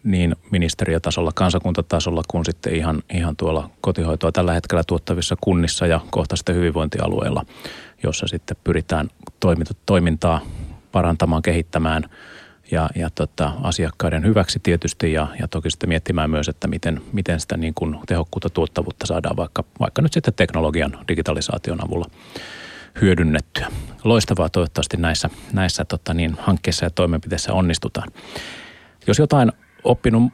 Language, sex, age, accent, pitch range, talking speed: Finnish, male, 30-49, native, 85-95 Hz, 125 wpm